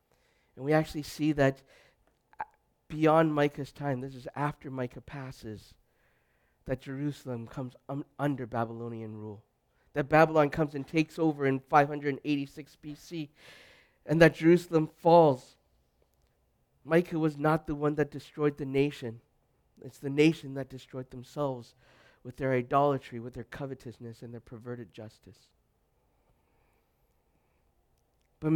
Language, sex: English, male